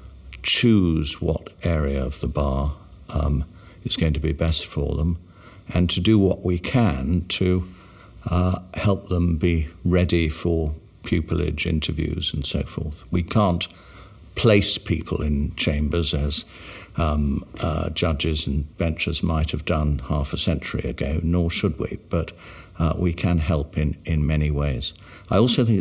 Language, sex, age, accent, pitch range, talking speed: English, male, 60-79, British, 75-95 Hz, 155 wpm